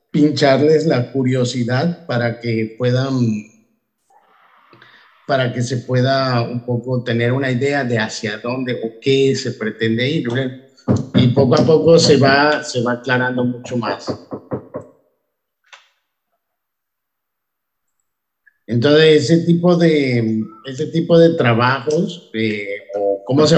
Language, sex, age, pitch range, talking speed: Spanish, male, 50-69, 115-135 Hz, 115 wpm